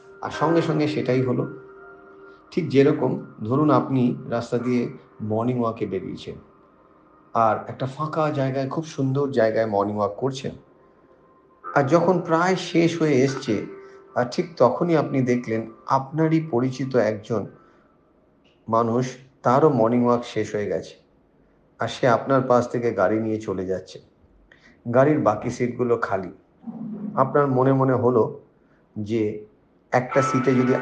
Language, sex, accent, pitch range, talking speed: Bengali, male, native, 110-135 Hz, 130 wpm